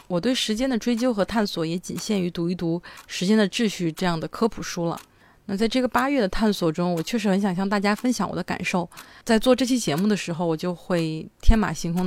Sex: female